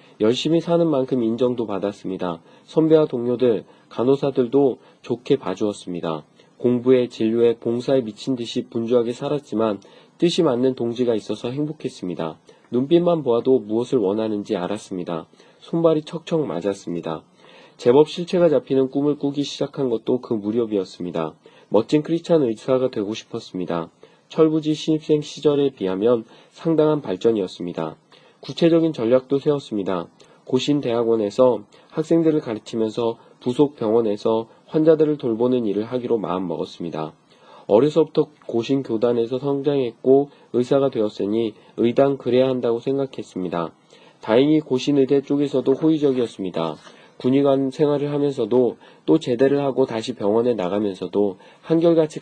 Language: Korean